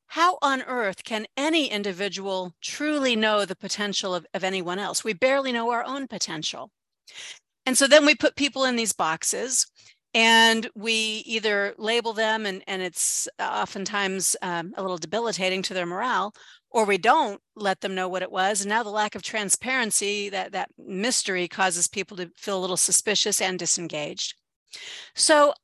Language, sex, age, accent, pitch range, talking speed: English, female, 40-59, American, 195-240 Hz, 170 wpm